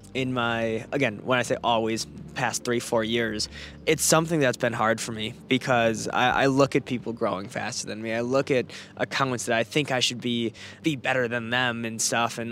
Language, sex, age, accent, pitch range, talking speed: English, male, 20-39, American, 115-140 Hz, 215 wpm